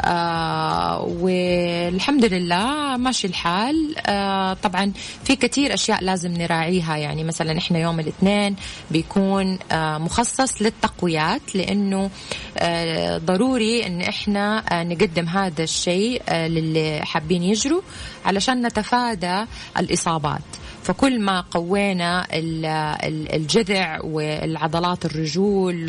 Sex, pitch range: female, 165-205 Hz